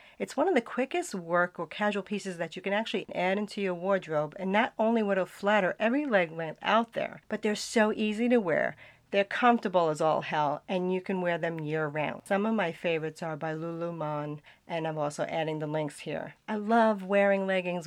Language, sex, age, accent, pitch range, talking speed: English, female, 40-59, American, 165-210 Hz, 220 wpm